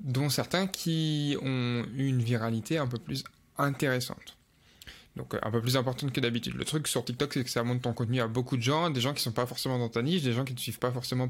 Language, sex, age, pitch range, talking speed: French, male, 20-39, 120-145 Hz, 265 wpm